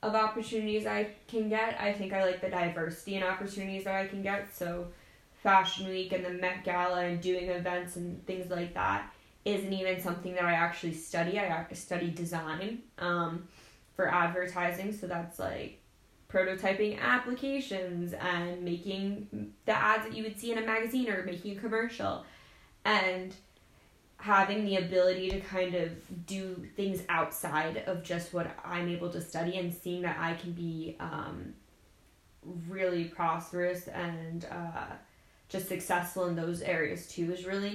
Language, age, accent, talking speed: English, 10-29, American, 160 wpm